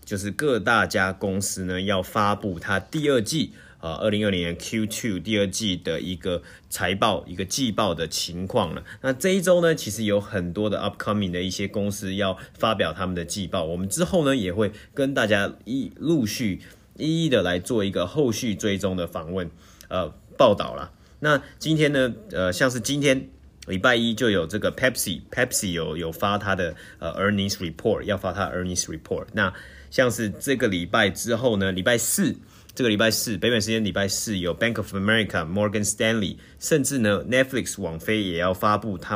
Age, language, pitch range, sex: 30-49, Chinese, 90-115 Hz, male